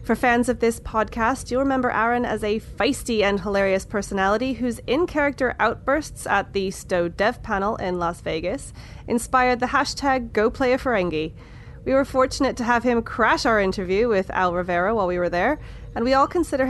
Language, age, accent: English, 30-49, American